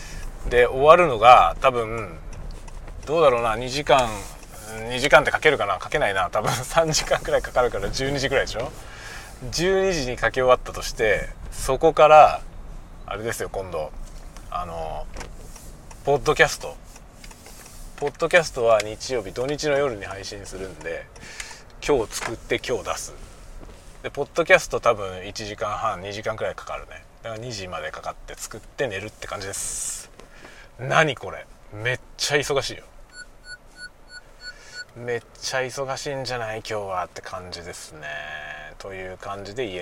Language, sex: Japanese, male